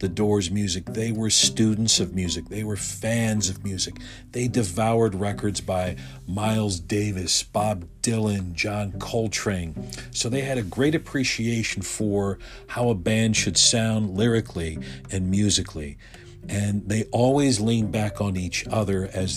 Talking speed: 145 wpm